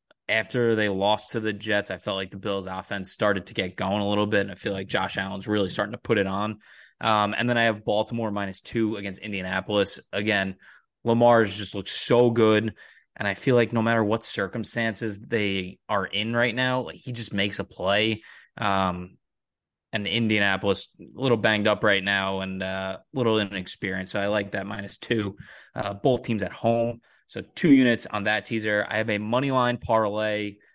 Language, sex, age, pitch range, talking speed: English, male, 20-39, 100-115 Hz, 195 wpm